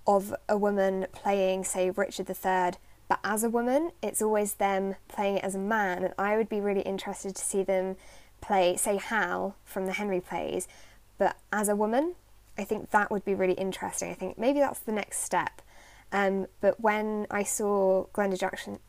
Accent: British